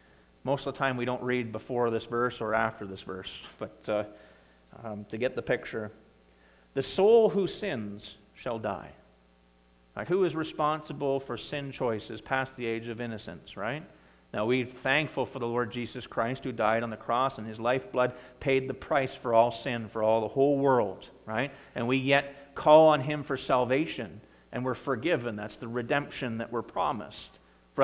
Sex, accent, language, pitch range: male, American, English, 110-155 Hz